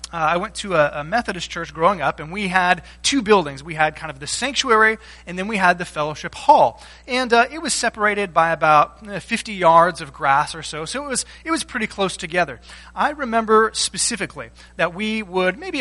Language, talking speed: English, 220 wpm